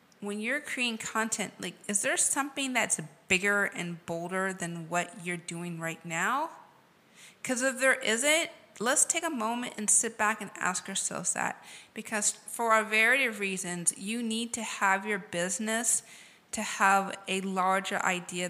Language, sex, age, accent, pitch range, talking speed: English, female, 30-49, American, 180-220 Hz, 160 wpm